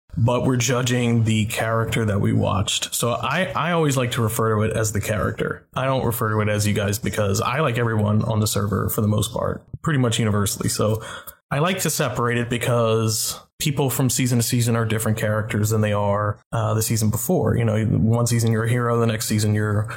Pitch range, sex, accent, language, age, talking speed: 115-135 Hz, male, American, English, 20-39, 225 wpm